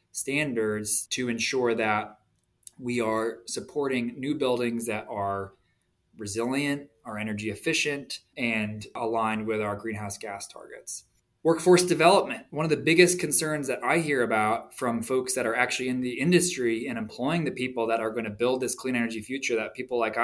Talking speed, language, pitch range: 170 wpm, English, 110-125 Hz